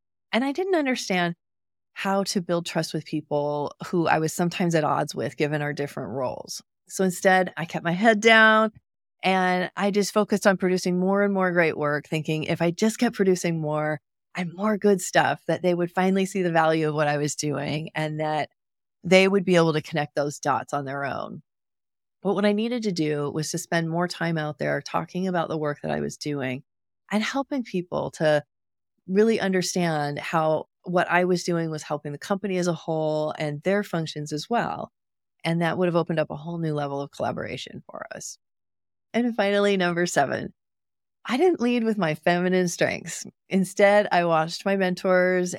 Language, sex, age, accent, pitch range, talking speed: English, female, 30-49, American, 155-200 Hz, 195 wpm